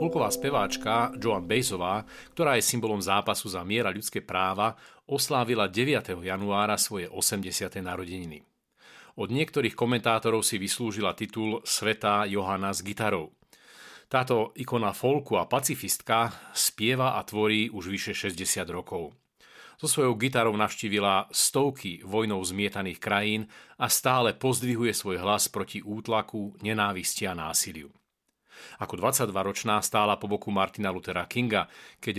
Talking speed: 125 wpm